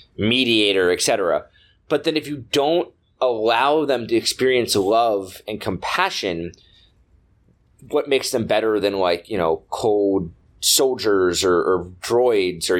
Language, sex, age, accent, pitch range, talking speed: English, male, 20-39, American, 105-170 Hz, 130 wpm